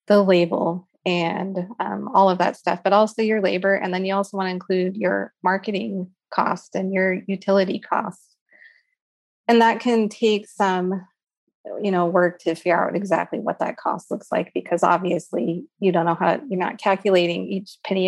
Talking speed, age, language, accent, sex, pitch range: 180 wpm, 30-49, English, American, female, 175-200 Hz